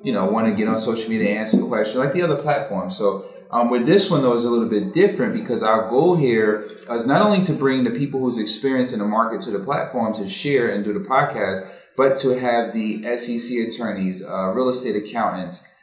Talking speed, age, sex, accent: 230 wpm, 30-49, male, American